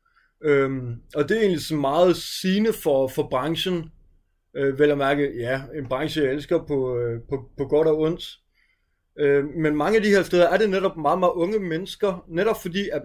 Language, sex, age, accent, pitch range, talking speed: Danish, male, 30-49, native, 135-170 Hz, 200 wpm